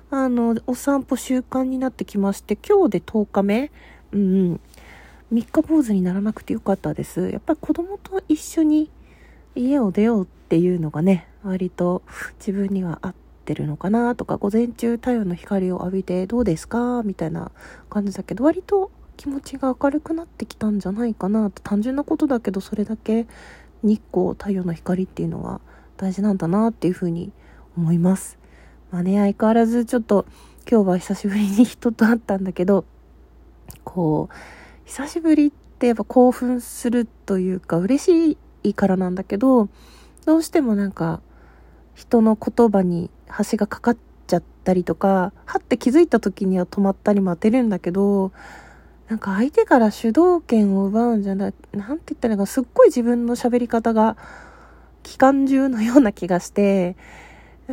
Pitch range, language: 190-250 Hz, Japanese